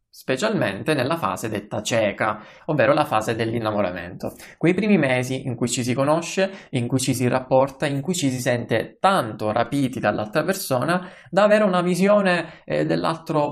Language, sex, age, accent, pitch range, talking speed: Italian, male, 20-39, native, 115-160 Hz, 160 wpm